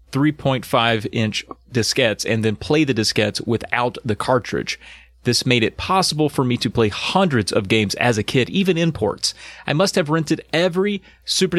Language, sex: English, male